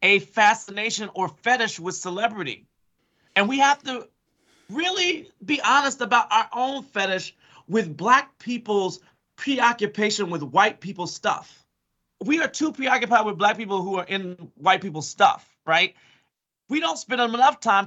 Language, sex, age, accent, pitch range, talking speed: English, male, 30-49, American, 180-240 Hz, 150 wpm